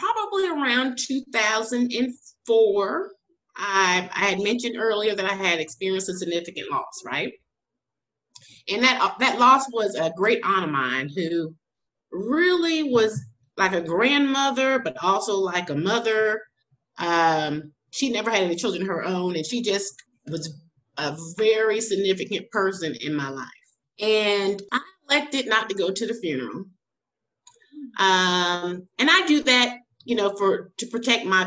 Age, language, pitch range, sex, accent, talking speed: 30-49, English, 180-245 Hz, female, American, 150 wpm